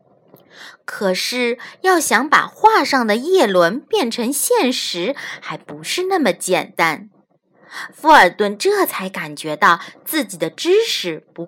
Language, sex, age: Chinese, female, 20-39